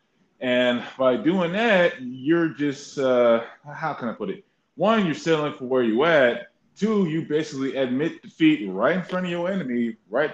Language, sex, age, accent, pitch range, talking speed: English, male, 20-39, American, 125-170 Hz, 180 wpm